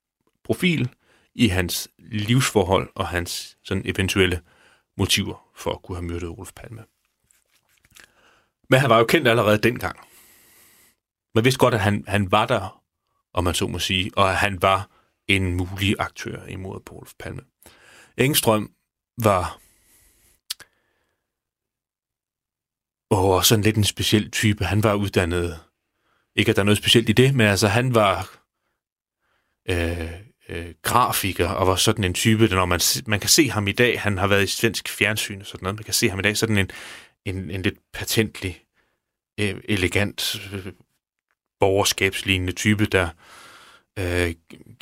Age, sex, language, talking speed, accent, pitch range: 30-49, male, Danish, 150 wpm, native, 95-110 Hz